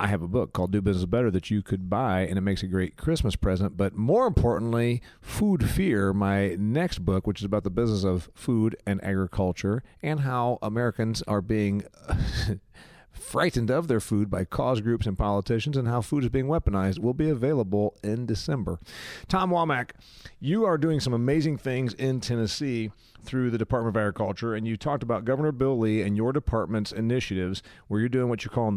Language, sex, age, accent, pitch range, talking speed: English, male, 40-59, American, 100-130 Hz, 195 wpm